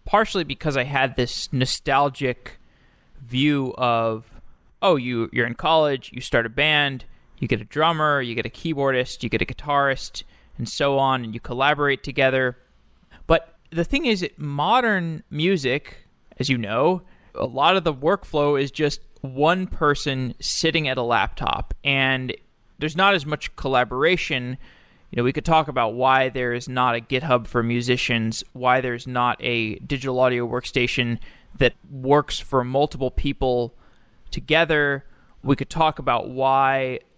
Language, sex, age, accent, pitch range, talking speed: English, male, 20-39, American, 125-150 Hz, 155 wpm